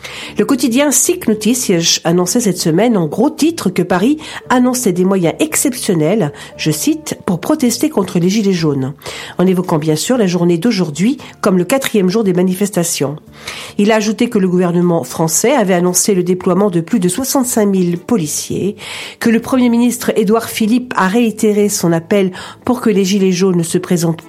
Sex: female